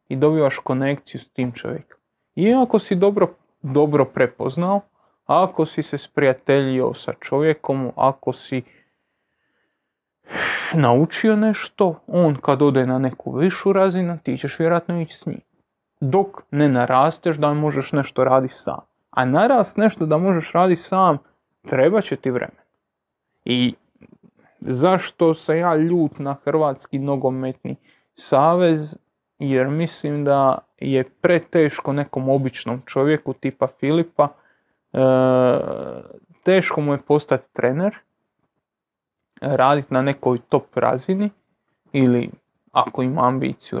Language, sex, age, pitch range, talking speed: Croatian, male, 30-49, 130-170 Hz, 120 wpm